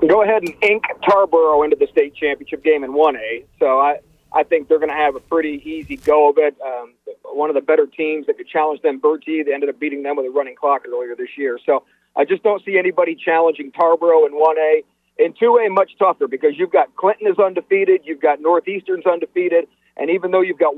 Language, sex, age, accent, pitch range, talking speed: English, male, 40-59, American, 155-220 Hz, 235 wpm